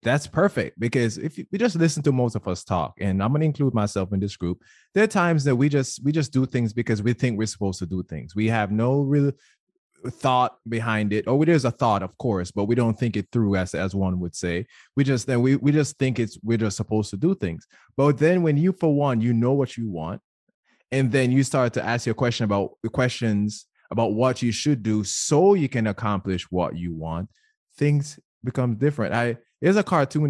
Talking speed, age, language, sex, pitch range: 235 wpm, 20-39, English, male, 100-130 Hz